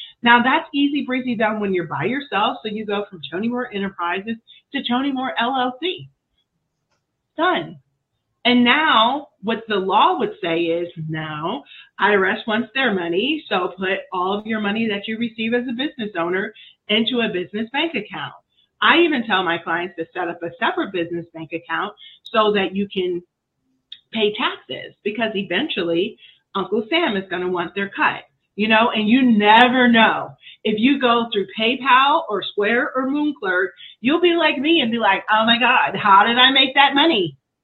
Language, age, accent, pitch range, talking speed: English, 30-49, American, 190-260 Hz, 180 wpm